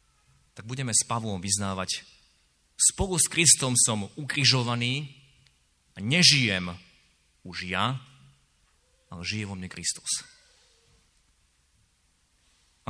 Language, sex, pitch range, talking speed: Slovak, male, 90-135 Hz, 95 wpm